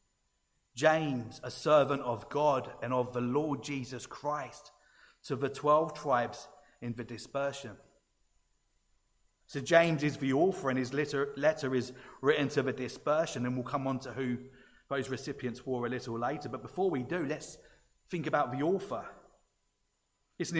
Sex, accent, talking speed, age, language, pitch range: male, British, 155 wpm, 30-49, English, 130-155 Hz